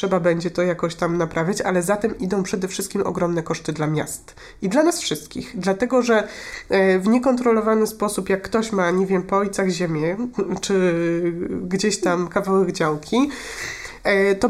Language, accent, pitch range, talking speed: Polish, native, 185-230 Hz, 155 wpm